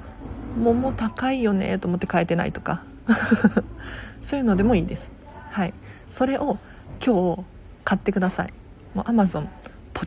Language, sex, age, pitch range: Japanese, female, 40-59, 175-235 Hz